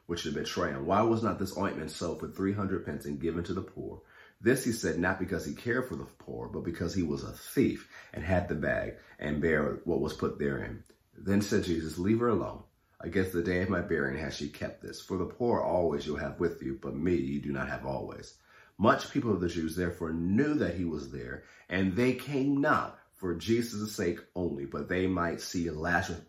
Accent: American